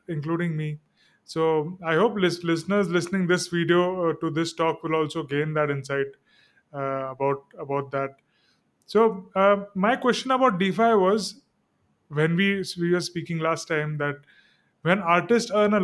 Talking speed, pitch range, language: 150 wpm, 155-185 Hz, English